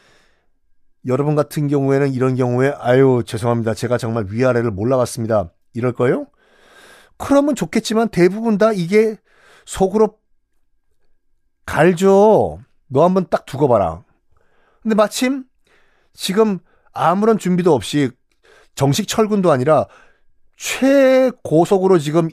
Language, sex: Korean, male